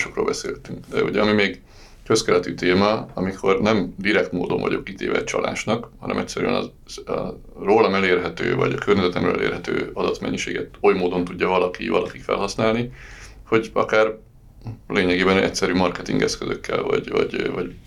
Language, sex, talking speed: Hungarian, male, 130 wpm